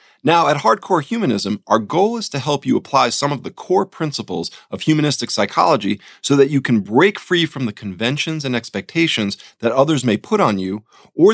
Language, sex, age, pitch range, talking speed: English, male, 40-59, 120-165 Hz, 195 wpm